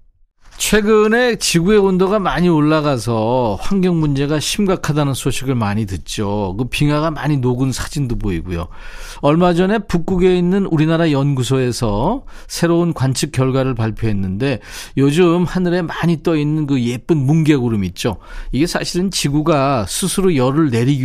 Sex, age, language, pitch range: male, 40-59, Korean, 120-170 Hz